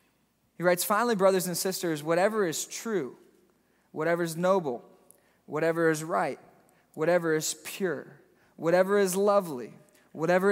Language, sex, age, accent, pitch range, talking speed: English, male, 20-39, American, 170-220 Hz, 125 wpm